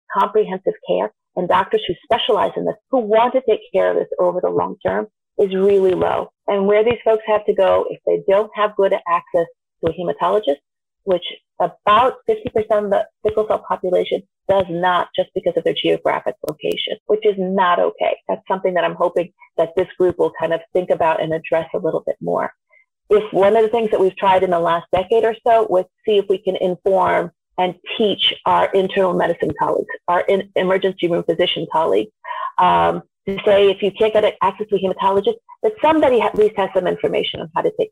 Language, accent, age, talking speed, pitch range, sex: English, American, 40-59, 205 wpm, 180-255 Hz, female